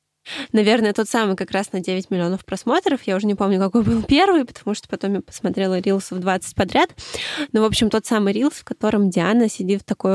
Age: 20-39